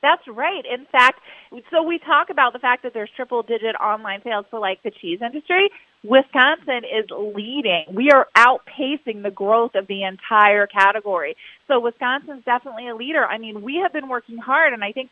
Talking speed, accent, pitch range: 185 wpm, American, 210-275 Hz